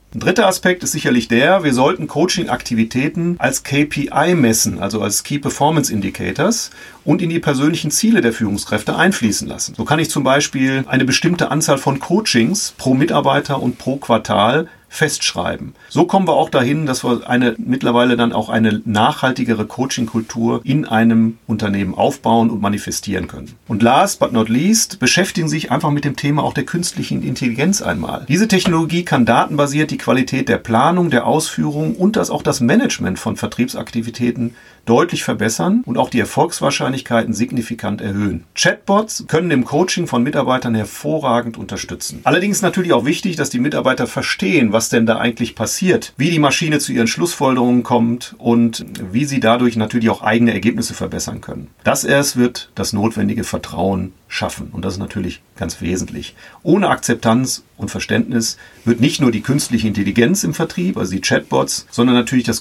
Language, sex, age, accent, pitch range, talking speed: German, male, 40-59, German, 115-150 Hz, 165 wpm